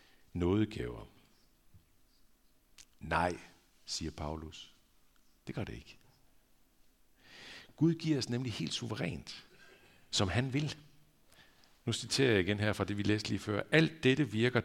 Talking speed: 125 wpm